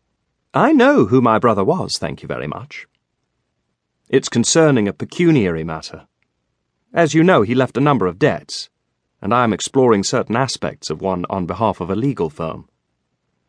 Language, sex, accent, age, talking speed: English, male, British, 40-59, 170 wpm